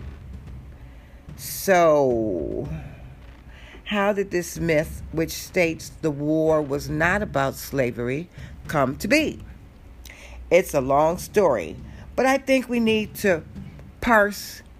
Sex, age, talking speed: female, 50-69, 110 wpm